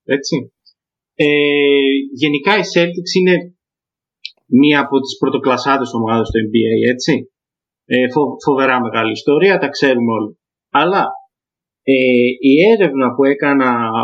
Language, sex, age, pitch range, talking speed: Greek, male, 30-49, 125-180 Hz, 115 wpm